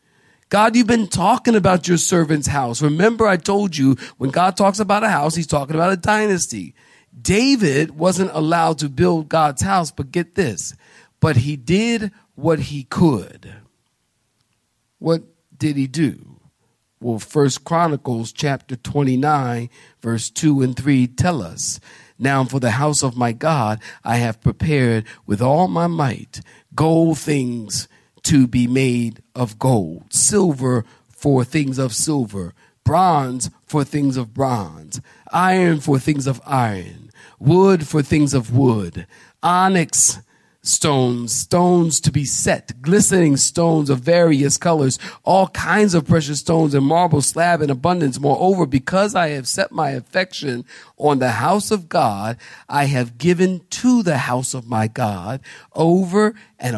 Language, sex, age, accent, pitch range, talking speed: English, male, 50-69, American, 125-175 Hz, 145 wpm